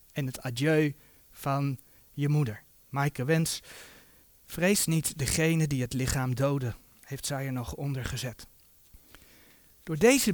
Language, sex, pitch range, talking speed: Dutch, male, 140-210 Hz, 135 wpm